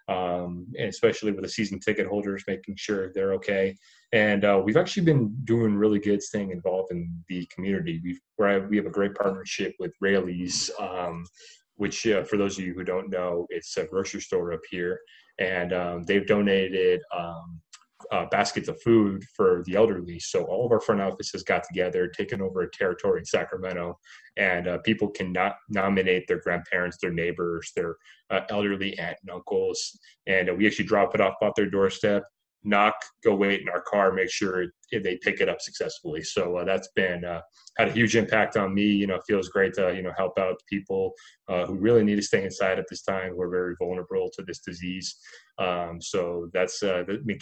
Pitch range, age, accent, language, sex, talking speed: 90-110 Hz, 20-39, American, English, male, 200 wpm